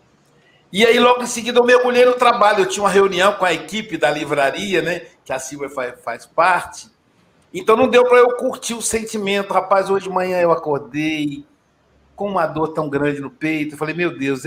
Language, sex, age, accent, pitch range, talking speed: Portuguese, male, 60-79, Brazilian, 150-210 Hz, 205 wpm